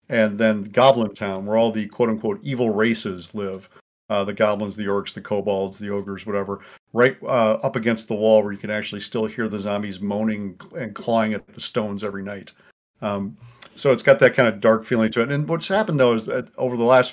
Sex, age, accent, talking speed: male, 50-69, American, 220 wpm